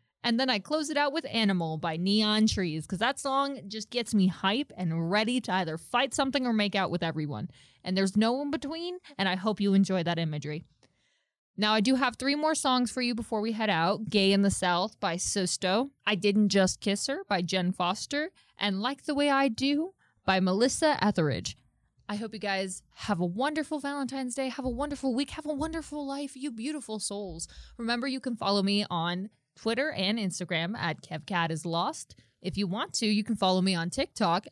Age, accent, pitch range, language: 20-39, American, 175-265 Hz, English